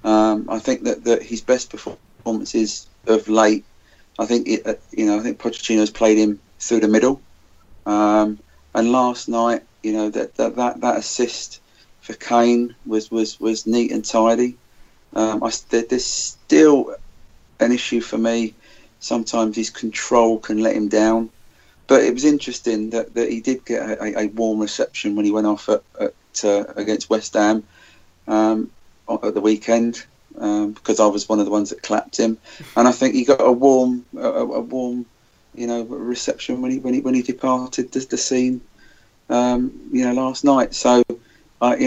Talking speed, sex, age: 180 wpm, male, 40-59